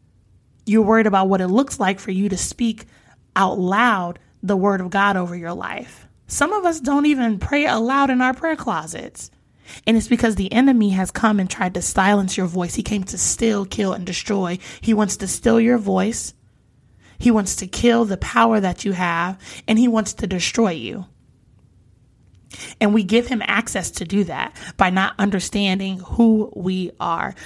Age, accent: 20-39, American